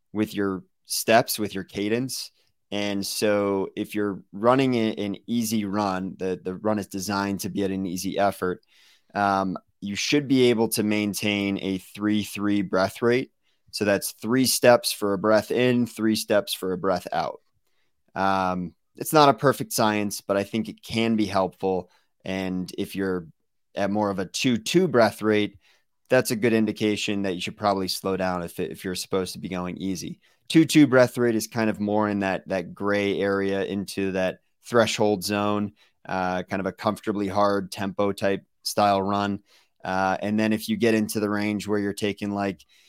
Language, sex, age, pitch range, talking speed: English, male, 20-39, 95-110 Hz, 190 wpm